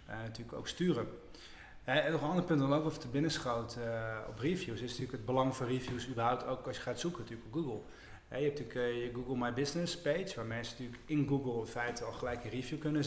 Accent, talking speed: Dutch, 255 wpm